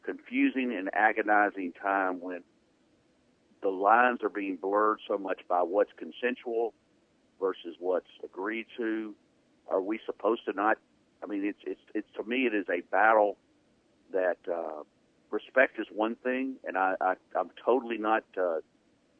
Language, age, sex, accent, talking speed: English, 50-69, male, American, 150 wpm